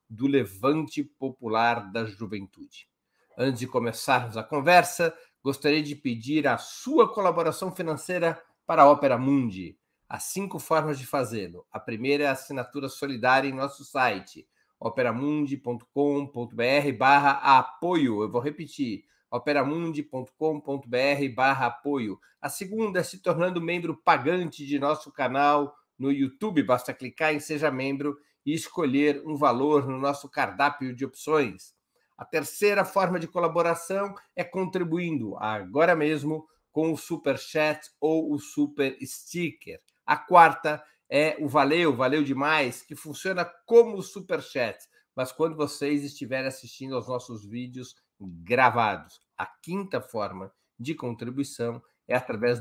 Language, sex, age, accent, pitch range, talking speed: Portuguese, male, 50-69, Brazilian, 130-160 Hz, 130 wpm